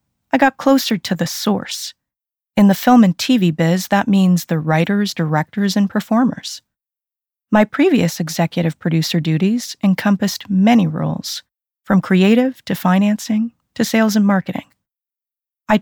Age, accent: 40-59, American